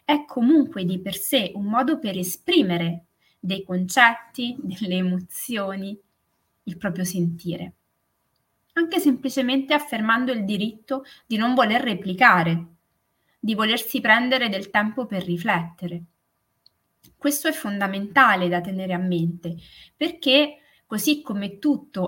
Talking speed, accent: 115 wpm, native